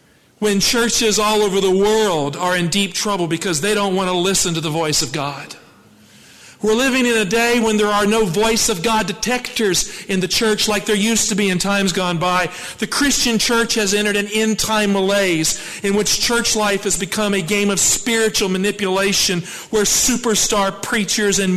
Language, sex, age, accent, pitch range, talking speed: English, male, 40-59, American, 175-215 Hz, 195 wpm